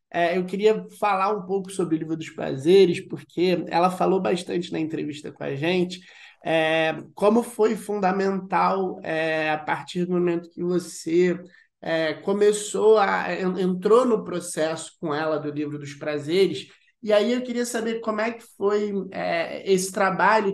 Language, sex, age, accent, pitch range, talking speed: Portuguese, male, 20-39, Brazilian, 165-205 Hz, 160 wpm